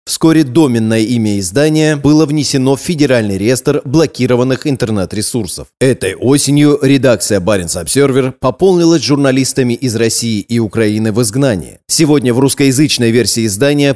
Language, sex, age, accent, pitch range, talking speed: Russian, male, 30-49, native, 110-145 Hz, 125 wpm